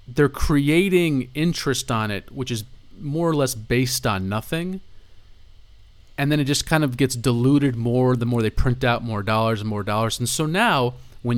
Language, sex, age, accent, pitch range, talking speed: English, male, 30-49, American, 110-140 Hz, 190 wpm